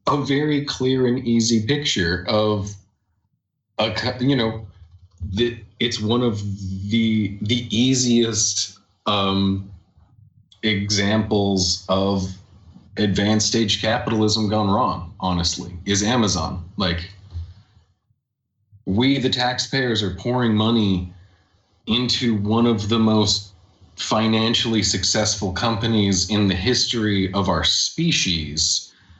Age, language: 30-49, English